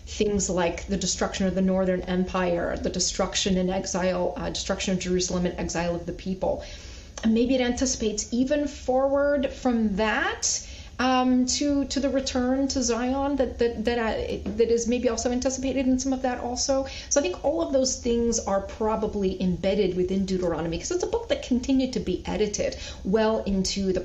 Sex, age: female, 30-49